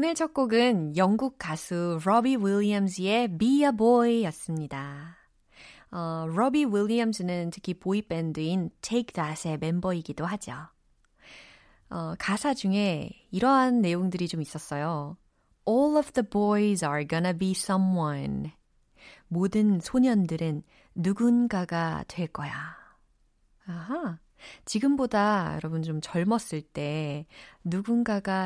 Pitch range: 170-245 Hz